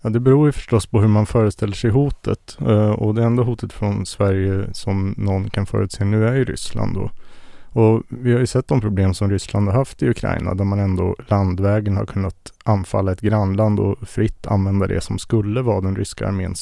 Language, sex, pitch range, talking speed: English, male, 100-120 Hz, 200 wpm